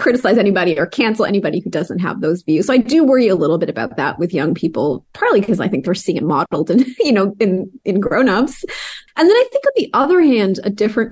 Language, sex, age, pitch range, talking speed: English, female, 20-39, 180-240 Hz, 250 wpm